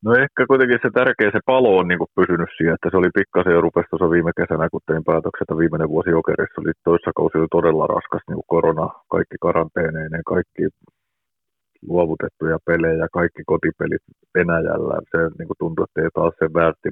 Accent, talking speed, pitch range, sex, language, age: native, 180 wpm, 85-100 Hz, male, Finnish, 30-49